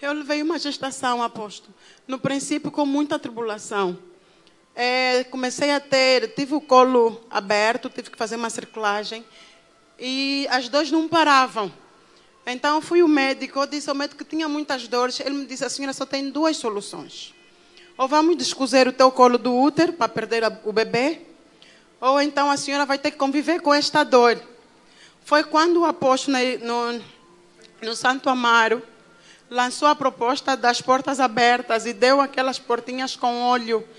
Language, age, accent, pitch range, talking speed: Portuguese, 20-39, Brazilian, 240-285 Hz, 160 wpm